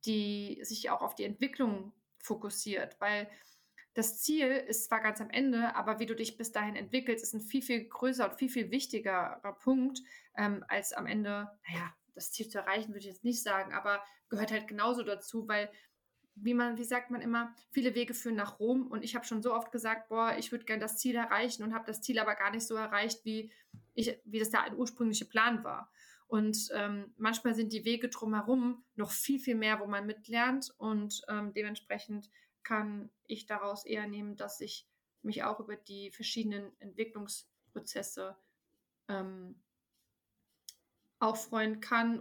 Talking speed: 180 wpm